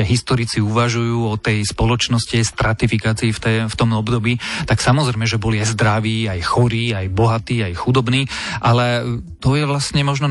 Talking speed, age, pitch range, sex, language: 170 wpm, 30-49, 110-125 Hz, male, Slovak